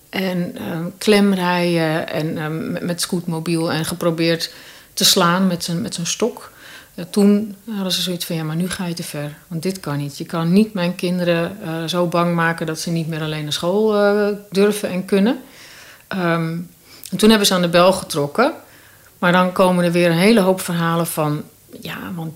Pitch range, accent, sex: 170-200 Hz, Dutch, female